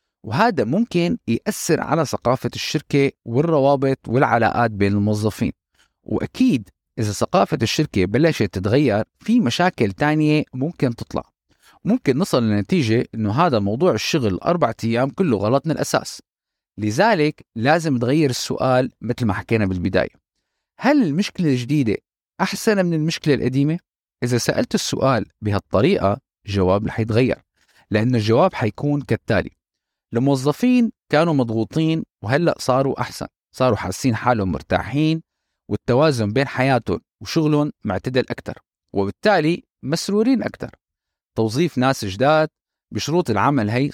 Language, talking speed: Arabic, 115 wpm